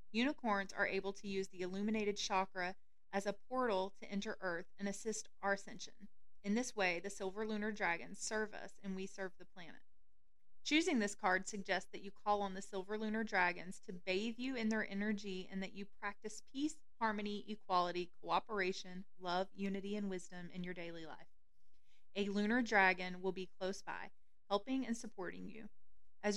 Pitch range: 190-225 Hz